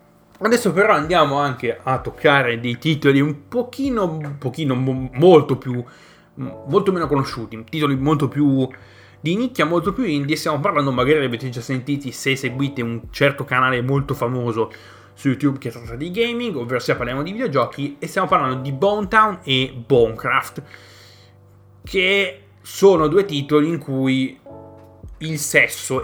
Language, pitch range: Italian, 115-150 Hz